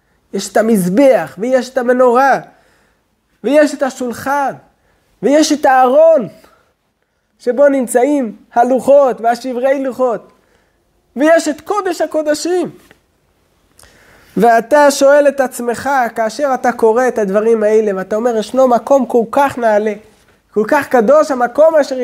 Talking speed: 115 wpm